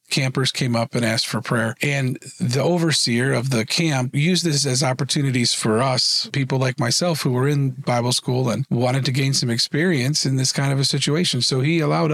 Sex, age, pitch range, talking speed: male, 40-59, 125-150 Hz, 210 wpm